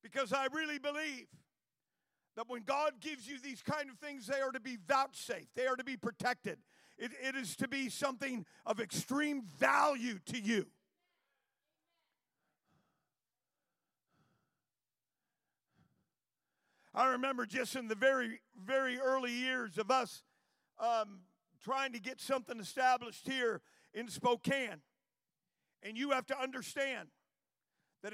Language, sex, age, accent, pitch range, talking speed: English, male, 50-69, American, 230-270 Hz, 130 wpm